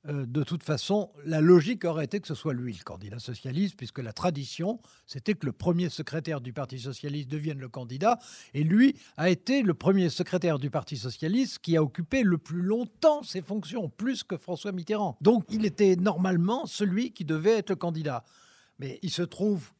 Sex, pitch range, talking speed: male, 135-185 Hz, 195 wpm